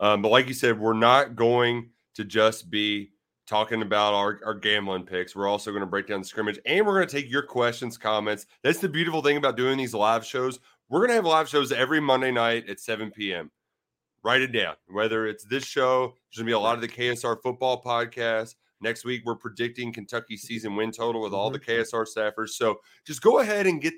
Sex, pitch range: male, 110-135 Hz